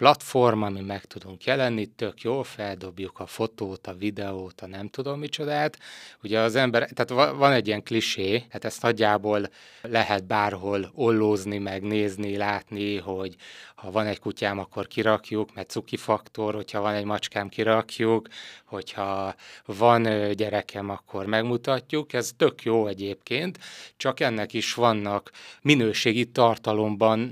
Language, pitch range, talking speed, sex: Hungarian, 100-115 Hz, 135 wpm, male